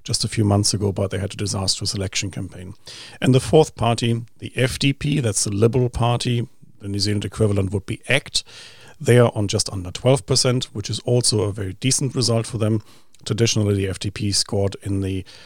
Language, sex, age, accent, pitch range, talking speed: English, male, 40-59, German, 100-120 Hz, 195 wpm